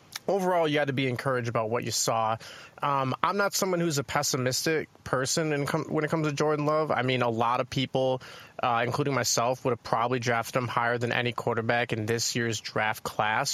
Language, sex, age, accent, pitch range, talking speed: English, male, 20-39, American, 120-145 Hz, 215 wpm